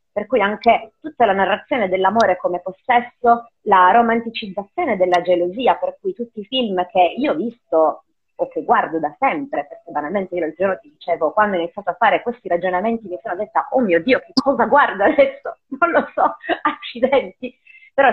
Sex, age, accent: female, 30-49, native